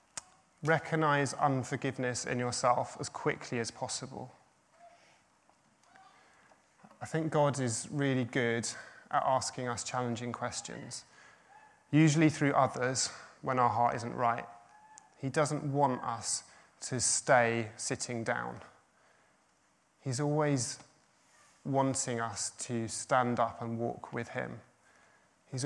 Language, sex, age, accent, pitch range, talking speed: English, male, 20-39, British, 120-140 Hz, 110 wpm